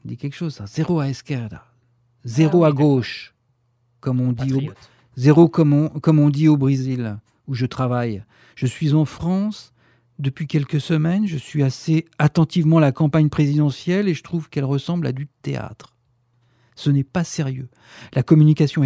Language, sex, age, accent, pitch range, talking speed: French, male, 50-69, French, 125-165 Hz, 180 wpm